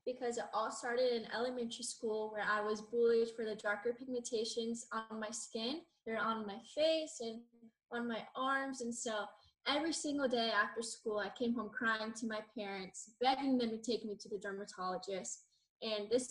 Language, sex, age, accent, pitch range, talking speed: English, female, 10-29, American, 210-245 Hz, 185 wpm